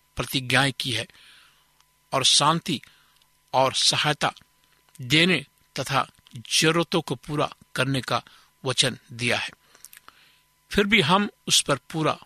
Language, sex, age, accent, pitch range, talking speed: Hindi, male, 60-79, native, 130-165 Hz, 115 wpm